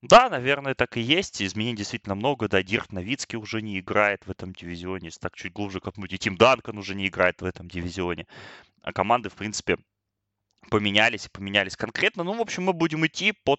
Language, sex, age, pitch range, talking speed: Russian, male, 20-39, 95-125 Hz, 200 wpm